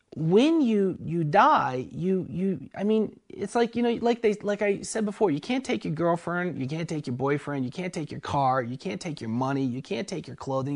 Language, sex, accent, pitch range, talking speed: English, male, American, 150-210 Hz, 240 wpm